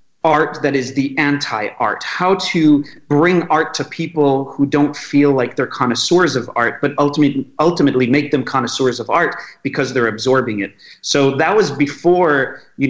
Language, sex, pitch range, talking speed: English, male, 130-155 Hz, 170 wpm